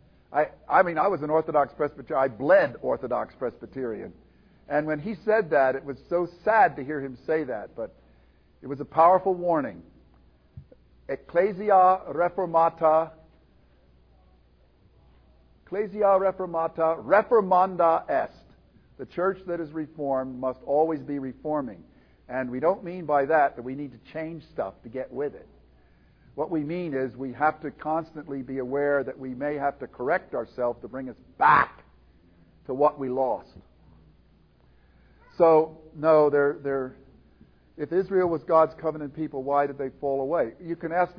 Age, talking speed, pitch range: 50-69, 150 wpm, 120-165 Hz